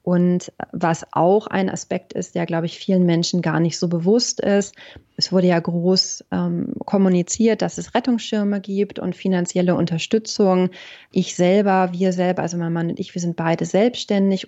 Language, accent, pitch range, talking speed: German, German, 170-190 Hz, 175 wpm